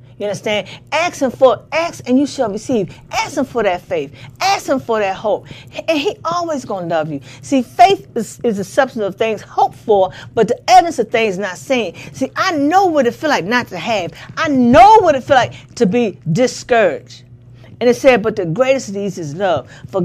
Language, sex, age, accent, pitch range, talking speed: English, female, 50-69, American, 165-250 Hz, 220 wpm